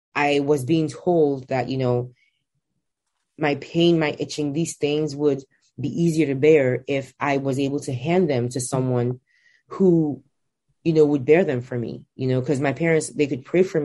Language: English